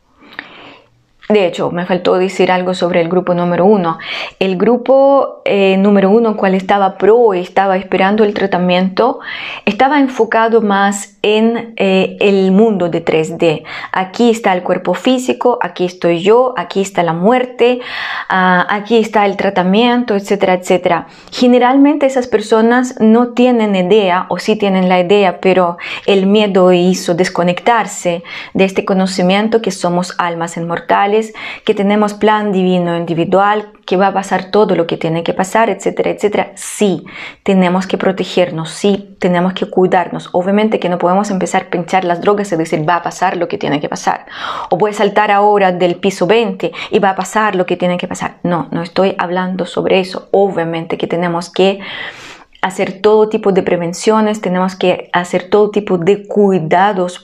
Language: Spanish